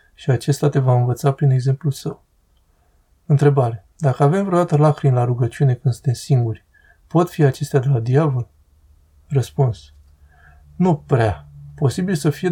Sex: male